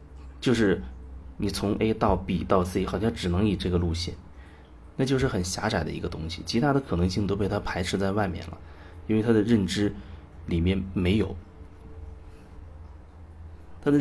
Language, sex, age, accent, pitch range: Chinese, male, 30-49, native, 85-105 Hz